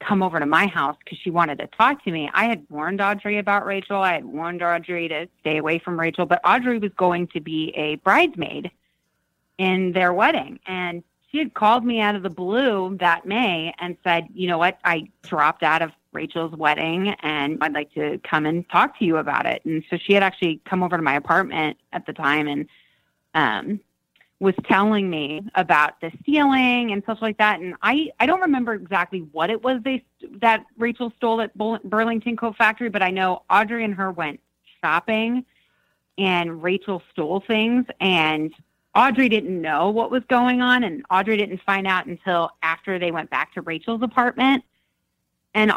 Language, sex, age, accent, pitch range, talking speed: English, female, 30-49, American, 170-225 Hz, 195 wpm